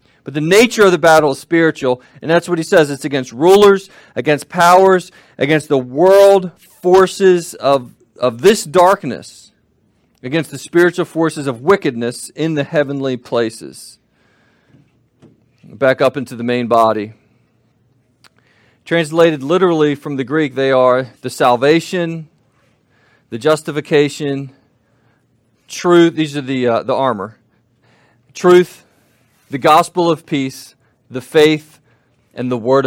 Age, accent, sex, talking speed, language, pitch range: 40-59, American, male, 130 wpm, English, 125-165 Hz